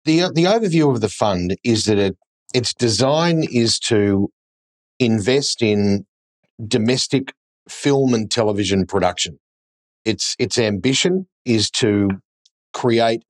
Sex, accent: male, Australian